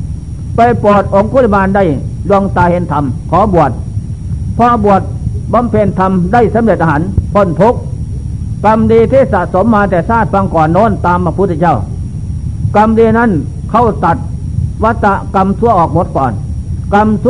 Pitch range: 165-210 Hz